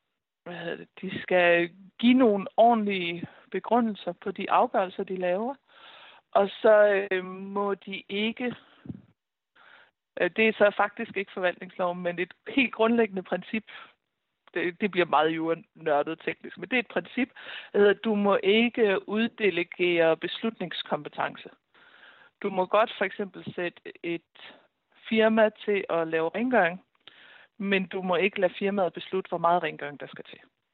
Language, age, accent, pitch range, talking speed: Danish, 60-79, native, 170-210 Hz, 130 wpm